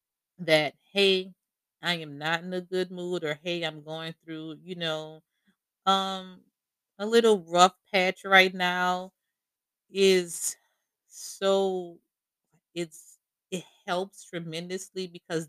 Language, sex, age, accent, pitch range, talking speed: English, female, 30-49, American, 150-185 Hz, 115 wpm